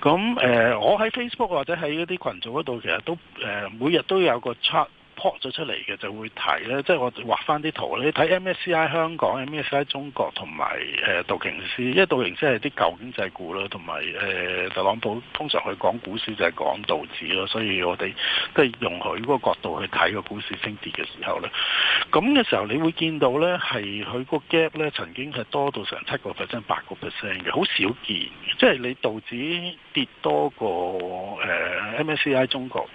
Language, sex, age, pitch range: Chinese, male, 60-79, 120-175 Hz